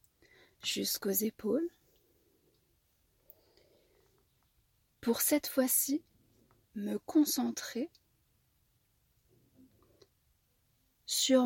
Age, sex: 40-59, female